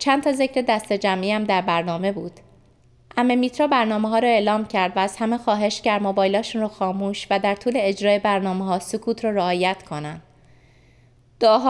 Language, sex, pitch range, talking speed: Persian, female, 175-230 Hz, 175 wpm